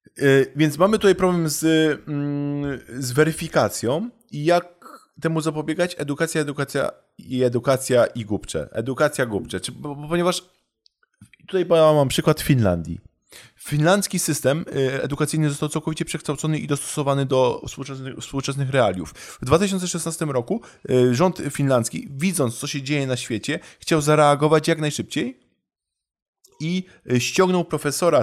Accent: native